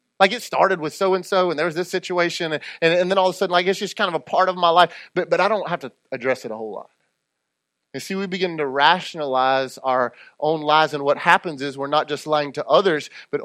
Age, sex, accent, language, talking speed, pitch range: 30-49, male, American, English, 270 wpm, 140-175 Hz